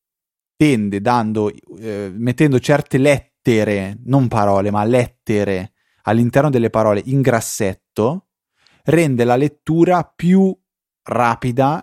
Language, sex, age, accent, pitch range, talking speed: Italian, male, 20-39, native, 110-135 Hz, 100 wpm